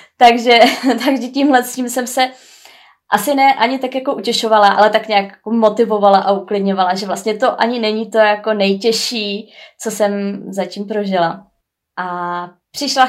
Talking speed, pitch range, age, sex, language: 150 wpm, 190-225 Hz, 20-39, female, Czech